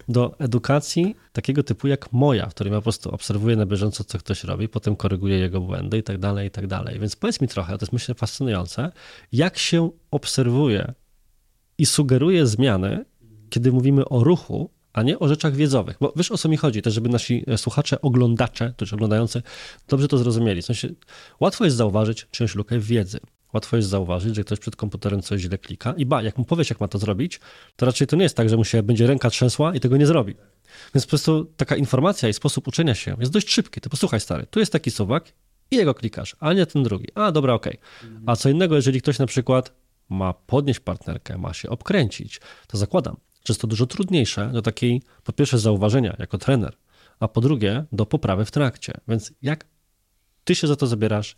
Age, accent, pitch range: 20-39, native, 105-140 Hz